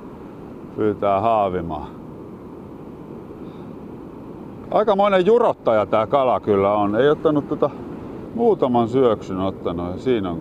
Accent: native